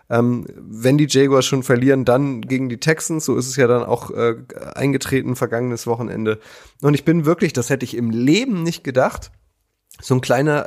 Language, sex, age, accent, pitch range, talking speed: German, male, 30-49, German, 110-135 Hz, 185 wpm